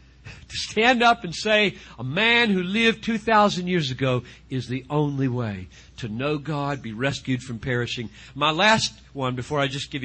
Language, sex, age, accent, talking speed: English, male, 50-69, American, 180 wpm